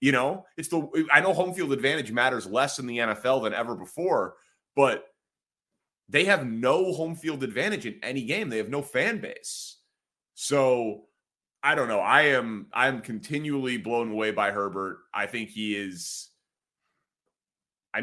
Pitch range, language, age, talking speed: 110-140 Hz, English, 30-49, 165 wpm